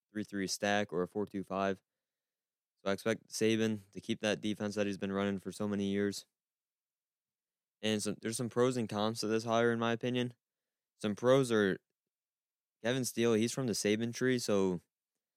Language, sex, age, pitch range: English, male, 20-39, 100-110 Hz